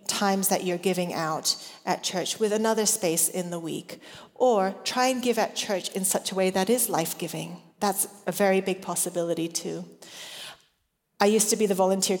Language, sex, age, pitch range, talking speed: English, female, 30-49, 170-200 Hz, 185 wpm